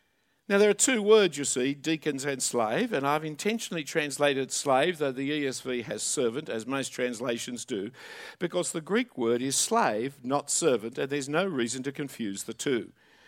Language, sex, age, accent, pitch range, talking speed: English, male, 50-69, Australian, 130-185 Hz, 180 wpm